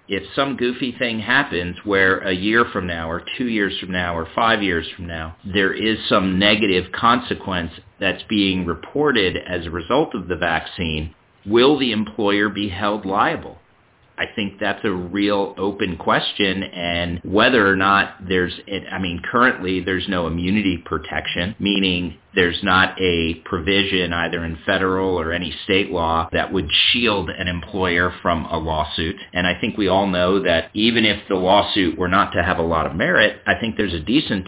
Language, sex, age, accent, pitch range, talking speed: English, male, 40-59, American, 85-100 Hz, 180 wpm